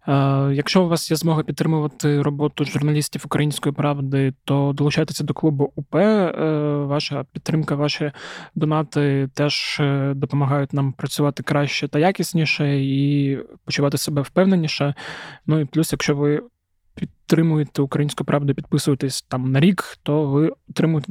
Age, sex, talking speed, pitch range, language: 20-39, male, 130 wpm, 140-160 Hz, Ukrainian